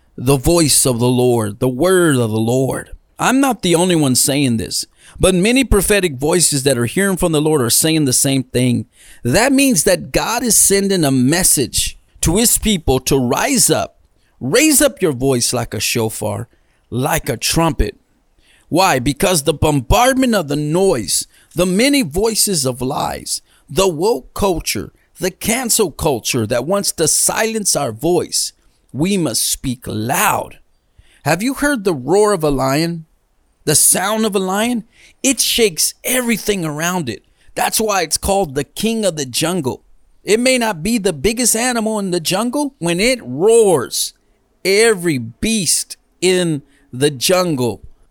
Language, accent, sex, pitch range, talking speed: English, American, male, 135-205 Hz, 160 wpm